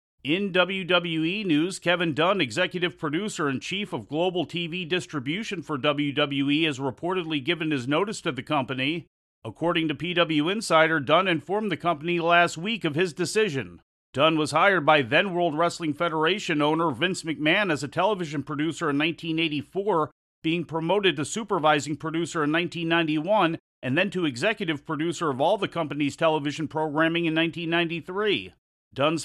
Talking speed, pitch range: 150 wpm, 150-175 Hz